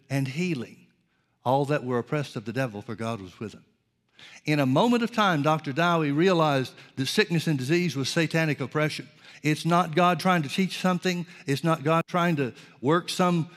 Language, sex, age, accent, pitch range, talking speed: English, male, 60-79, American, 130-170 Hz, 190 wpm